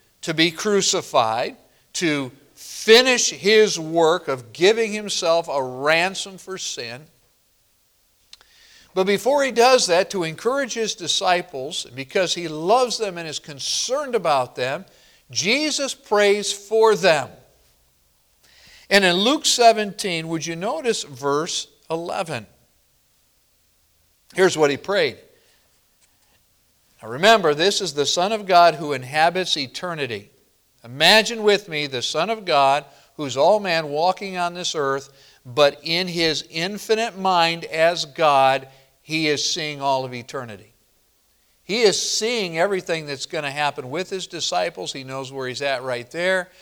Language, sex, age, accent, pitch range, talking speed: English, male, 50-69, American, 140-200 Hz, 135 wpm